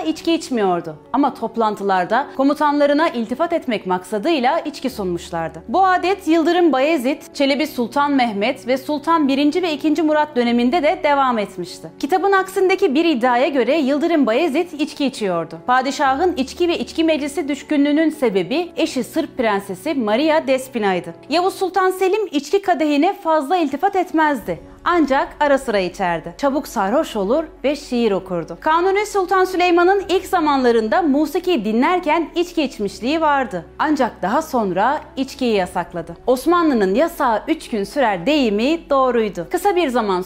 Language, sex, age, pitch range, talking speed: Turkish, female, 30-49, 220-325 Hz, 135 wpm